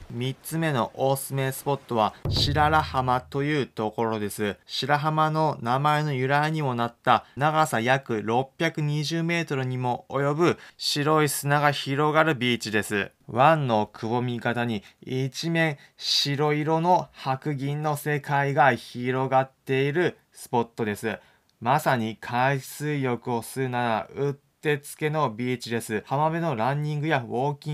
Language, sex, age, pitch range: Japanese, male, 20-39, 120-155 Hz